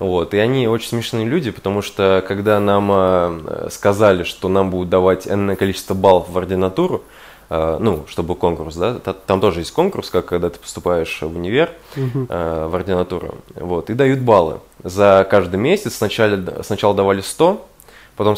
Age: 20-39